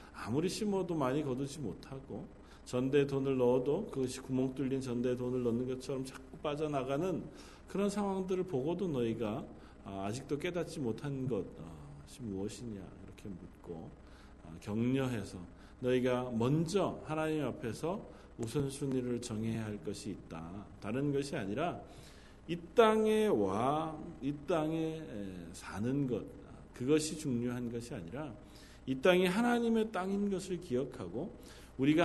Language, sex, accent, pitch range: Korean, male, native, 120-175 Hz